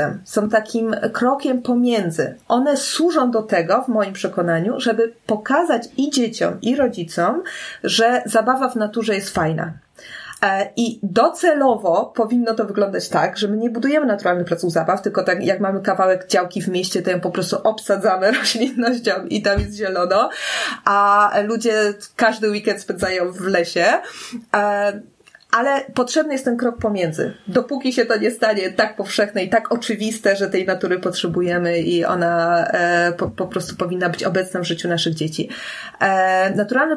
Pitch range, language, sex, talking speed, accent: 190-235 Hz, Polish, female, 155 wpm, native